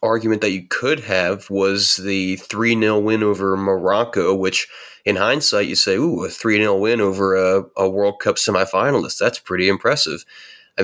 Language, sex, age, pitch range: English, male, 20-39, 95-105 Hz